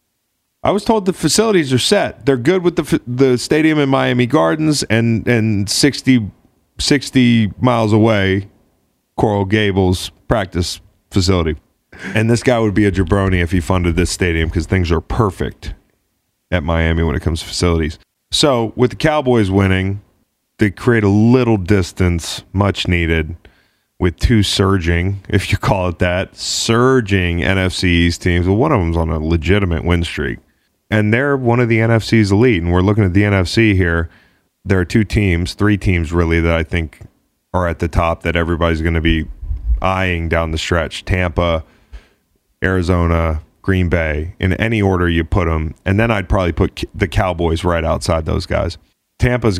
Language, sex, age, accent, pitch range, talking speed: English, male, 30-49, American, 85-110 Hz, 170 wpm